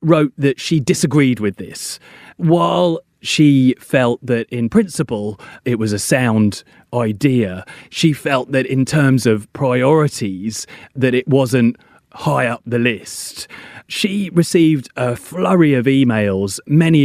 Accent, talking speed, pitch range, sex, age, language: British, 135 wpm, 115-160 Hz, male, 30-49, English